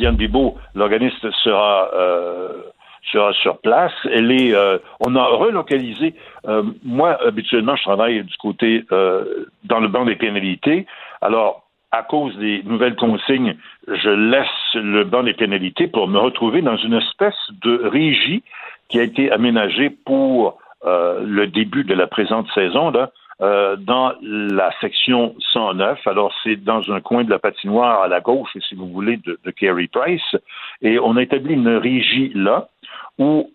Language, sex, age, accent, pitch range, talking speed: French, male, 60-79, French, 100-125 Hz, 160 wpm